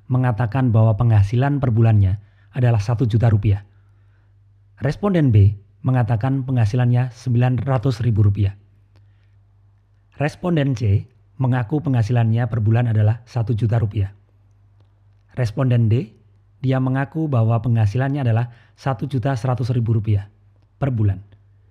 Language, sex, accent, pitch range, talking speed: Indonesian, male, native, 100-125 Hz, 100 wpm